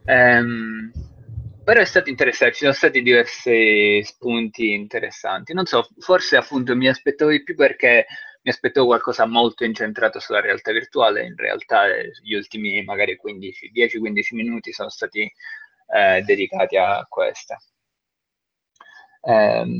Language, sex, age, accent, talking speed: Italian, male, 20-39, native, 125 wpm